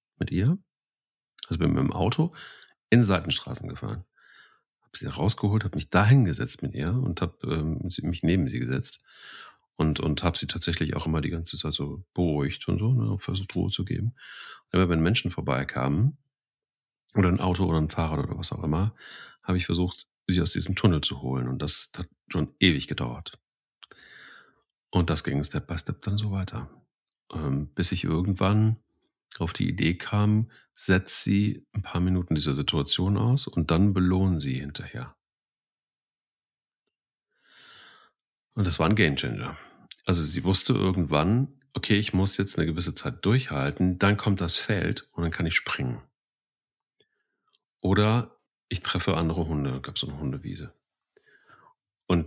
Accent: German